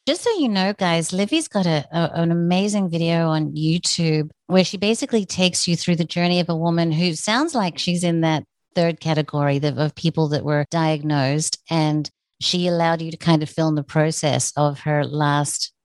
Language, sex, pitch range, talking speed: English, female, 155-185 Hz, 195 wpm